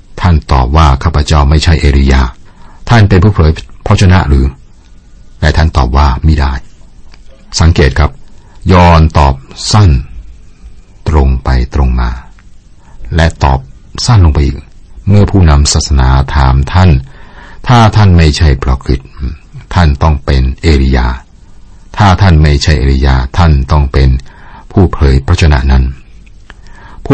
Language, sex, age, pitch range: Thai, male, 60-79, 70-90 Hz